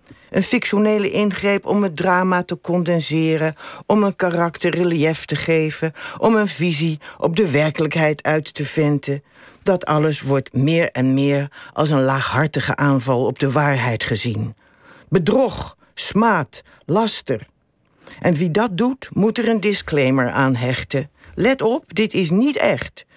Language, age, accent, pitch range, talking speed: Dutch, 60-79, Dutch, 140-185 Hz, 145 wpm